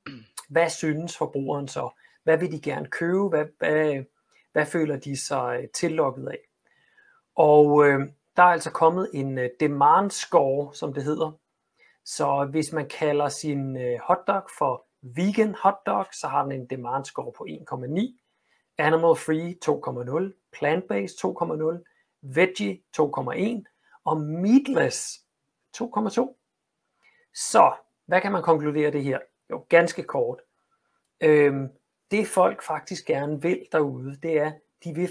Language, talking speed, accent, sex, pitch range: Danish, 135 wpm, native, male, 140-185 Hz